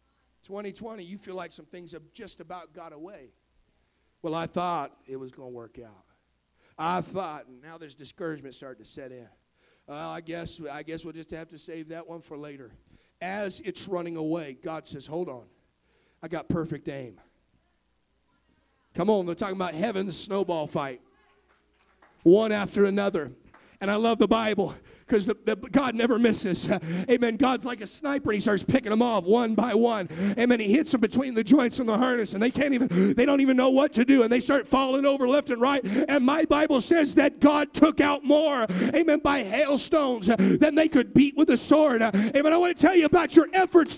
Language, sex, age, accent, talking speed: English, male, 40-59, American, 205 wpm